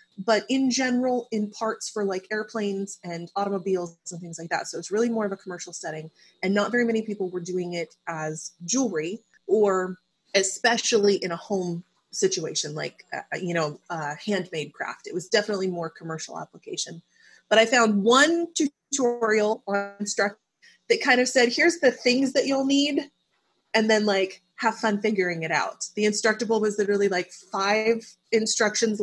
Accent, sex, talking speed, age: American, female, 170 wpm, 30-49